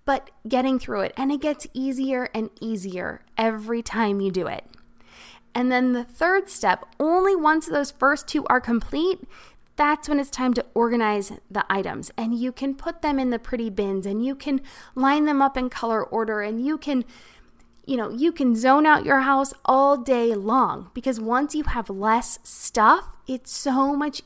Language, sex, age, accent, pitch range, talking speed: English, female, 20-39, American, 215-275 Hz, 190 wpm